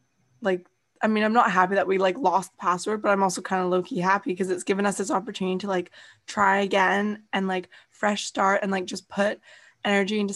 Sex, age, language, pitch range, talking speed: female, 20-39, English, 190-210 Hz, 225 wpm